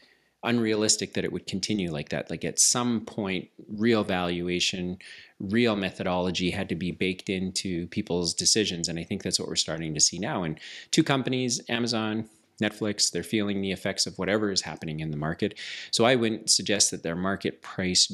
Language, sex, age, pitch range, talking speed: English, male, 30-49, 85-105 Hz, 185 wpm